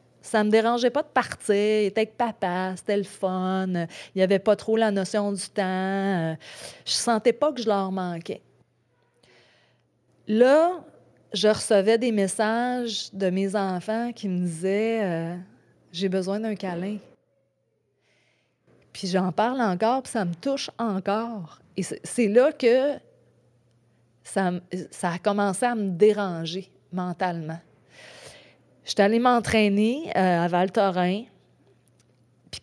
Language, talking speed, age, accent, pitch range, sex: French, 140 wpm, 30-49, Canadian, 185-225 Hz, female